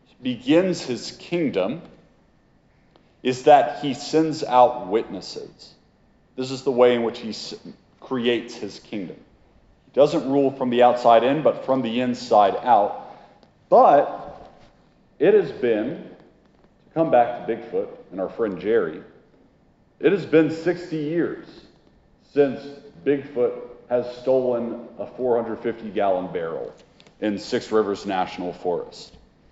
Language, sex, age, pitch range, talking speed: English, male, 40-59, 120-155 Hz, 125 wpm